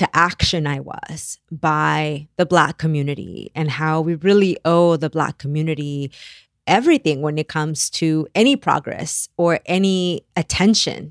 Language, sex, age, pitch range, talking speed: English, female, 20-39, 145-180 Hz, 140 wpm